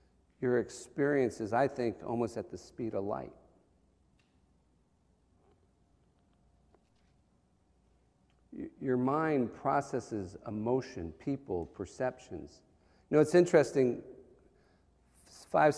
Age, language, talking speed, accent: 50-69, English, 85 wpm, American